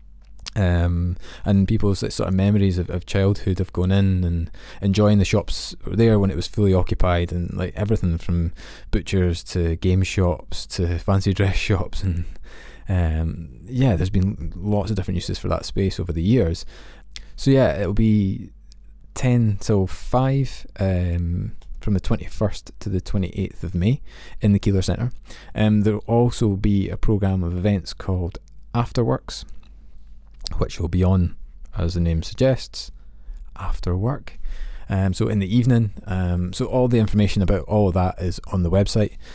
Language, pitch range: English, 90-105 Hz